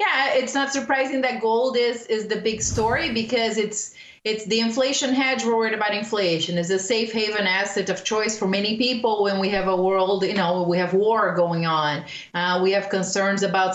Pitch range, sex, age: 185-230 Hz, female, 30-49